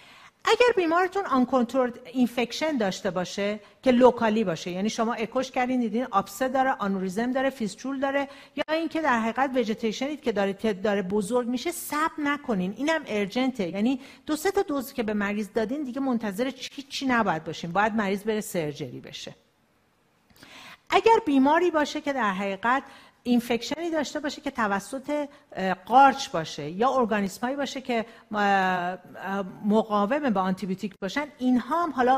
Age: 50-69